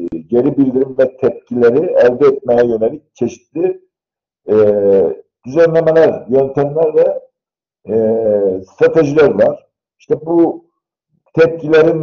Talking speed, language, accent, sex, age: 90 wpm, Turkish, native, male, 50-69